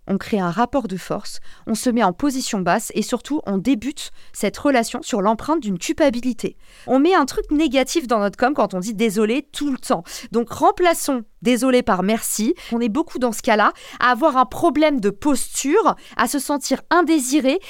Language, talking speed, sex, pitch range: French, 215 wpm, female, 215-285 Hz